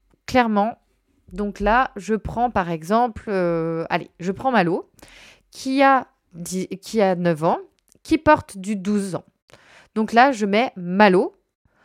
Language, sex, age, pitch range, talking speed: French, female, 20-39, 195-275 Hz, 135 wpm